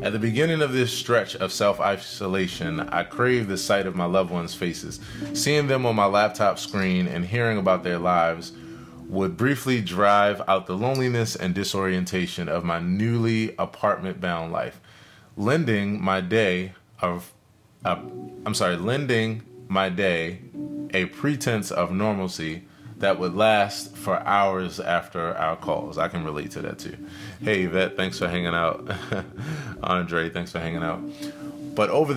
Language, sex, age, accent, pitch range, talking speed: English, male, 20-39, American, 90-115 Hz, 155 wpm